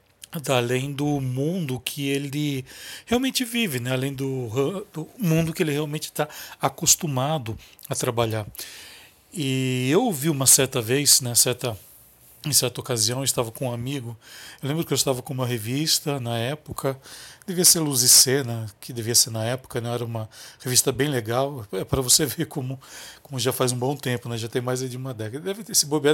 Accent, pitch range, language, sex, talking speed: Brazilian, 120-150 Hz, Portuguese, male, 190 wpm